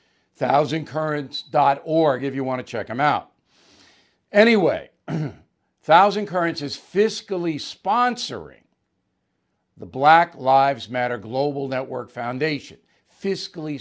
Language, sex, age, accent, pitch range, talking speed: English, male, 60-79, American, 130-190 Hz, 95 wpm